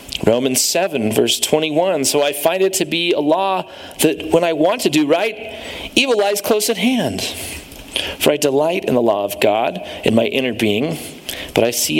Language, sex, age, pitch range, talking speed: English, male, 40-59, 145-210 Hz, 195 wpm